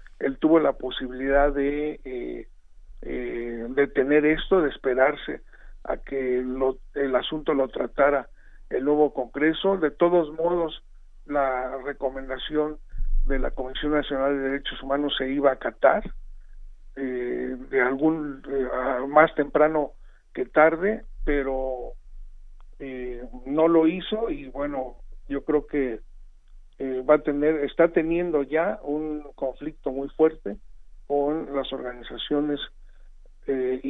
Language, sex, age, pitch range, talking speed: Spanish, male, 50-69, 130-150 Hz, 125 wpm